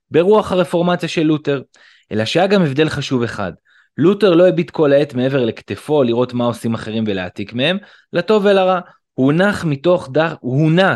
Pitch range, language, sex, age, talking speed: 120-175 Hz, Hebrew, male, 20-39, 155 wpm